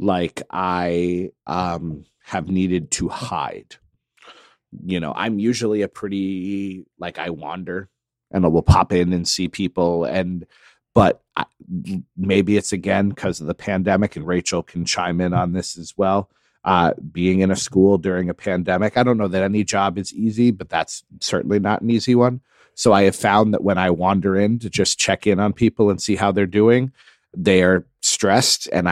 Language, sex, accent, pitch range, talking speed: English, male, American, 90-115 Hz, 185 wpm